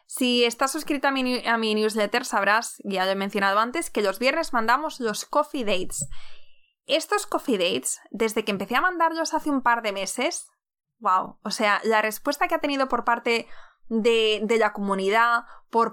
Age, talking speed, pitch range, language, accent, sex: 20-39, 185 wpm, 210-255 Hz, Spanish, Spanish, female